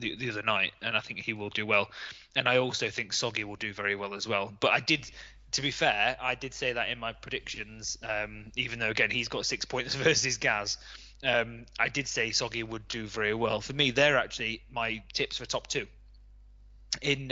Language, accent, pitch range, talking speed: English, British, 110-140 Hz, 220 wpm